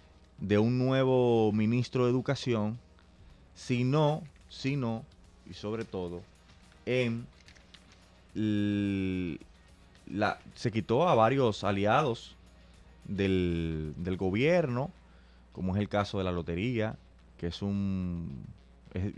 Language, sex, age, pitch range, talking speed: Spanish, male, 30-49, 90-110 Hz, 105 wpm